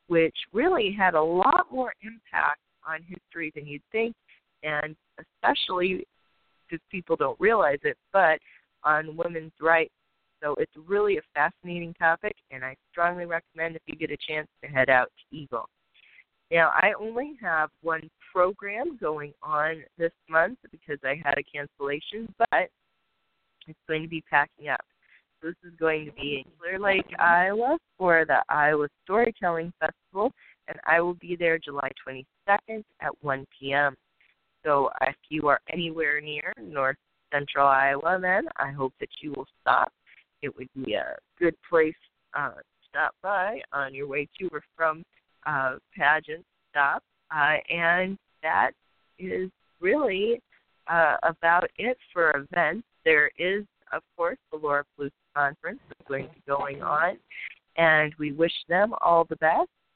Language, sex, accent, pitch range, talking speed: English, female, American, 145-180 Hz, 155 wpm